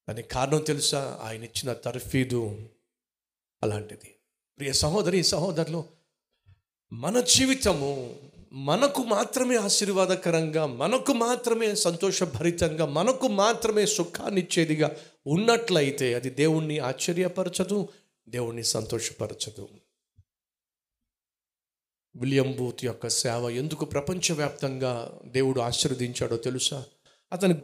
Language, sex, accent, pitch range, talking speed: Telugu, male, native, 120-170 Hz, 80 wpm